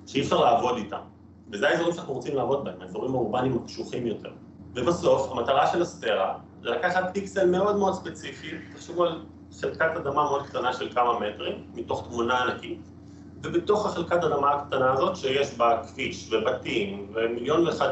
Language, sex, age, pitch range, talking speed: Hebrew, male, 30-49, 105-170 Hz, 155 wpm